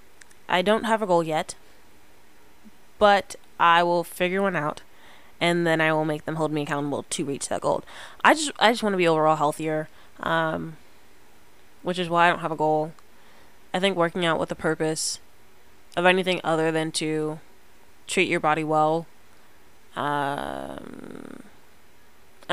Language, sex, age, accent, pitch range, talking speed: English, female, 20-39, American, 150-185 Hz, 160 wpm